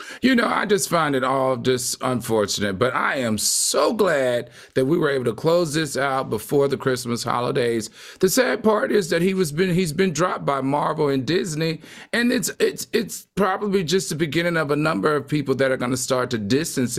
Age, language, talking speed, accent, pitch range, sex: 40-59, English, 215 wpm, American, 120-160 Hz, male